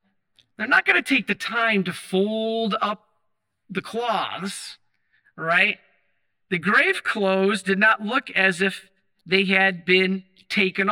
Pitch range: 130-205 Hz